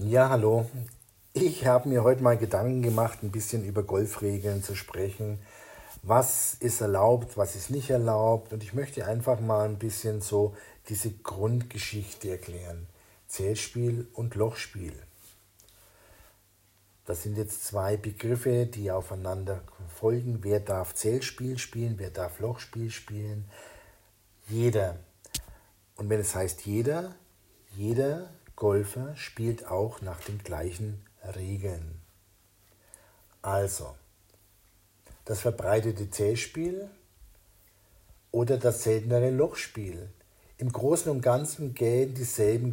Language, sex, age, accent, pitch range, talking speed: German, male, 50-69, German, 100-120 Hz, 110 wpm